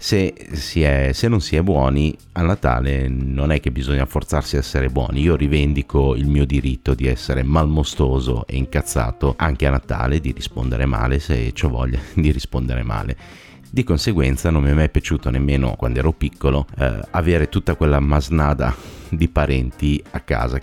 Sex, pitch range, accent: male, 65-80 Hz, native